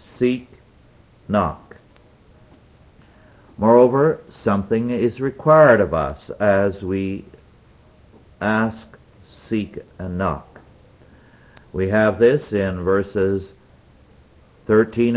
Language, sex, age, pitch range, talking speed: English, male, 60-79, 90-115 Hz, 80 wpm